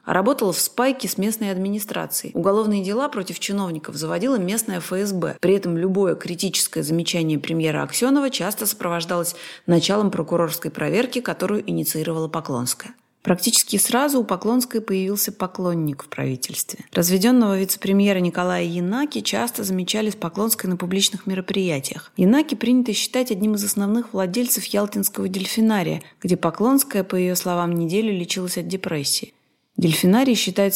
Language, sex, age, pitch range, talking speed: Russian, female, 30-49, 180-215 Hz, 135 wpm